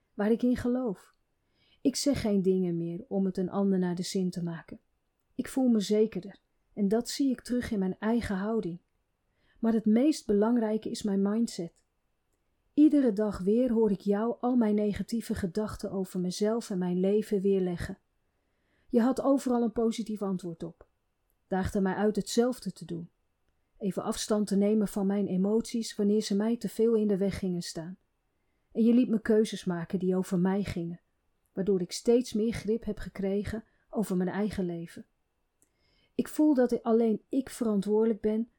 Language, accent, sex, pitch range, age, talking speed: Dutch, Dutch, female, 185-225 Hz, 40-59, 175 wpm